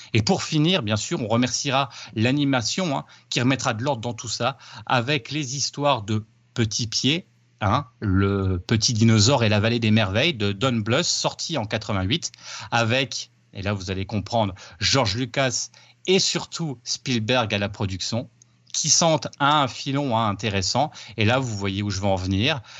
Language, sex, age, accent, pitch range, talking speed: French, male, 30-49, French, 105-135 Hz, 170 wpm